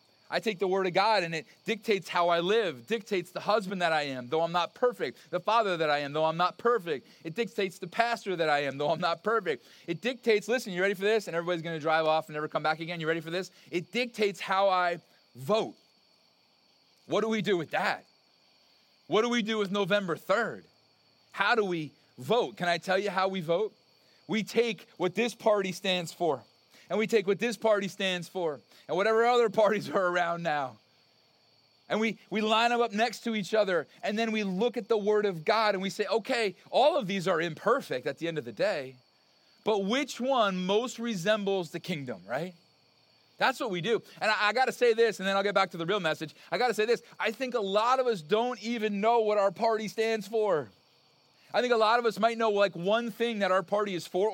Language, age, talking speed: English, 30-49, 230 wpm